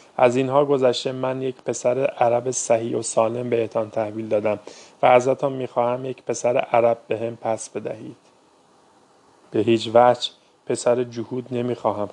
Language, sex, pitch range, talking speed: Persian, male, 110-125 Hz, 145 wpm